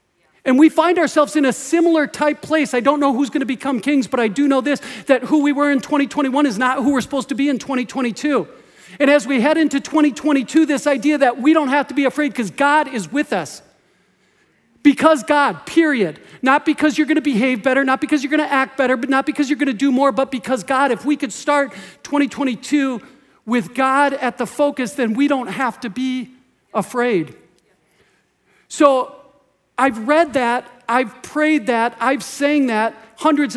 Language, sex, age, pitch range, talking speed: English, male, 50-69, 240-285 Hz, 200 wpm